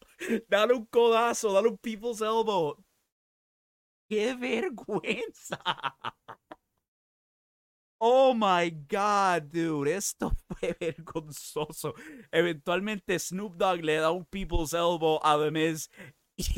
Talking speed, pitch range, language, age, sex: 100 wpm, 115-175 Hz, English, 30-49, male